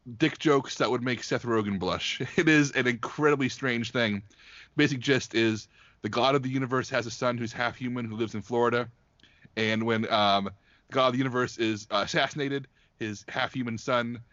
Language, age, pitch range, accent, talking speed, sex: English, 30-49, 110-135 Hz, American, 190 wpm, male